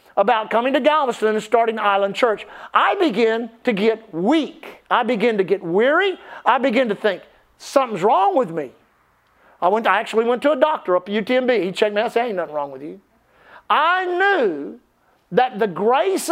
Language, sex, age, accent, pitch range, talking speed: English, male, 50-69, American, 225-305 Hz, 200 wpm